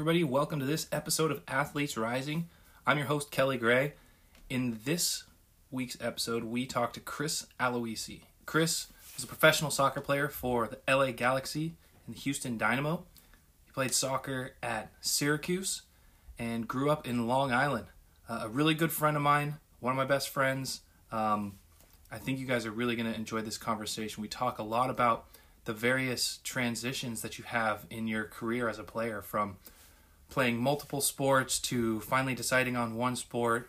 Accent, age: American, 20-39